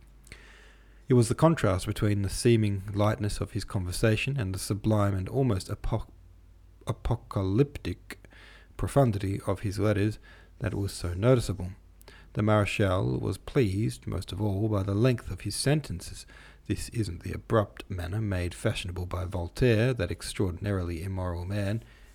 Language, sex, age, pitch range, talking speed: English, male, 40-59, 90-115 Hz, 140 wpm